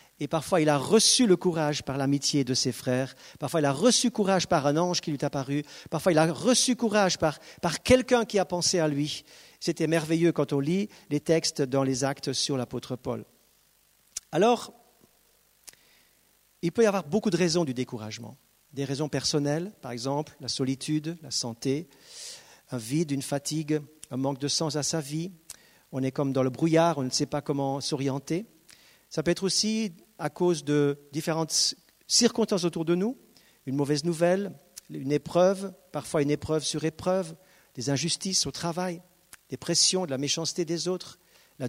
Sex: male